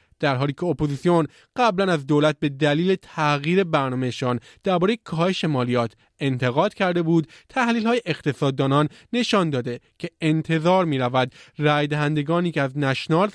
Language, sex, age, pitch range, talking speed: Persian, male, 30-49, 140-175 Hz, 130 wpm